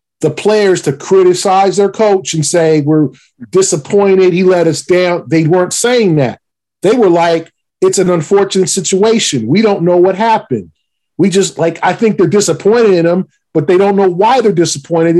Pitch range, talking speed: 165-200 Hz, 180 wpm